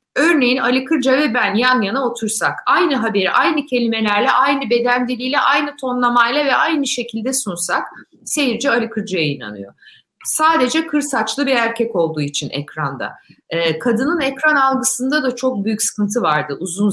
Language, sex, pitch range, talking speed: Turkish, female, 230-290 Hz, 145 wpm